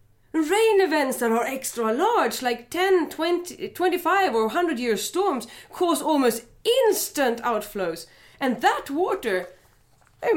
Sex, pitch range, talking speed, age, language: female, 195-325 Hz, 120 wpm, 30-49, English